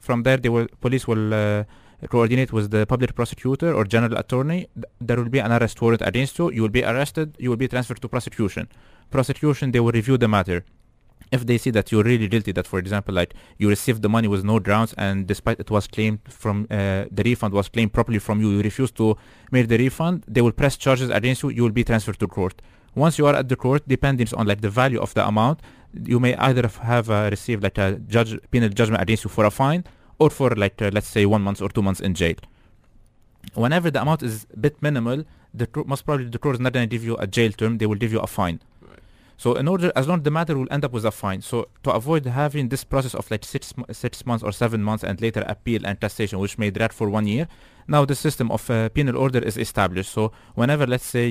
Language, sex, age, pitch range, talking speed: English, male, 20-39, 105-125 Hz, 245 wpm